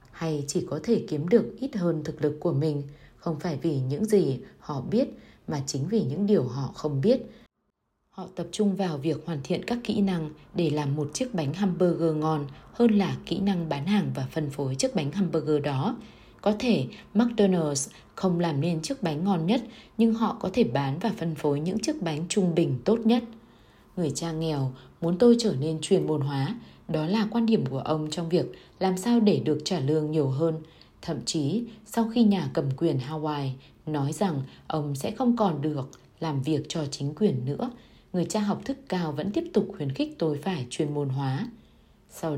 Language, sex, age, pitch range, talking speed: Vietnamese, female, 20-39, 150-200 Hz, 205 wpm